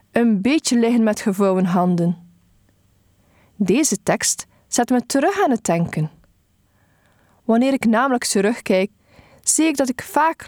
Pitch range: 175-260 Hz